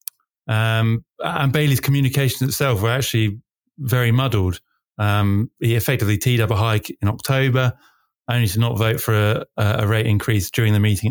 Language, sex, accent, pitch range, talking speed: English, male, British, 105-125 Hz, 160 wpm